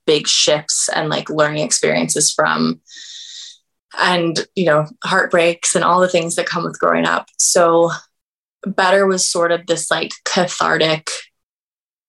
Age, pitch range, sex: 20-39, 160-195 Hz, female